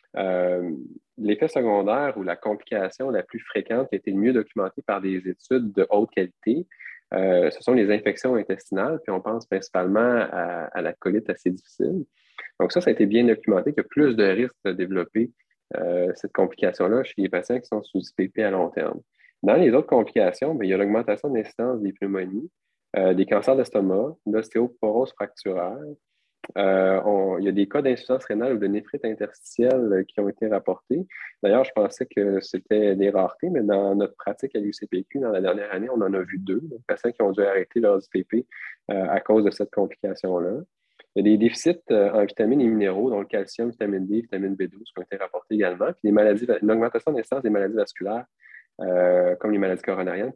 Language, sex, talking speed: French, male, 205 wpm